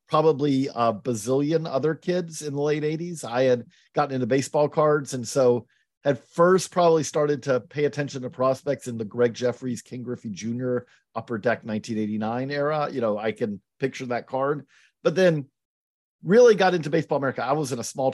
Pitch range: 120-150 Hz